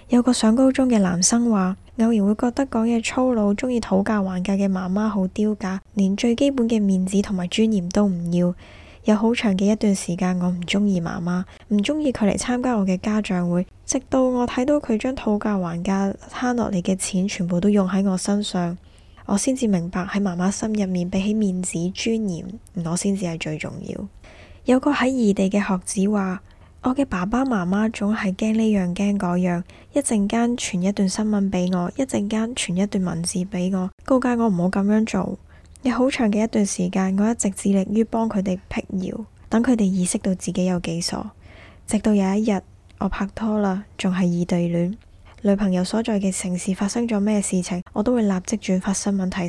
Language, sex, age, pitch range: Chinese, female, 10-29, 185-220 Hz